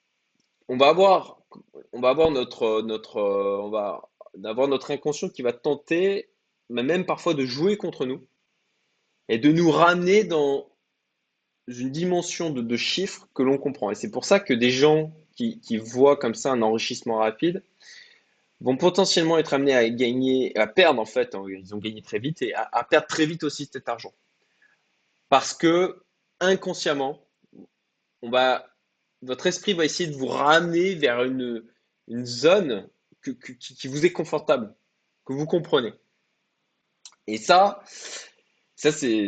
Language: French